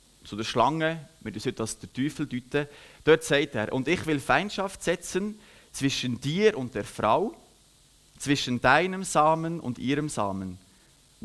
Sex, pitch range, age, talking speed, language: male, 115-155 Hz, 30-49, 155 wpm, German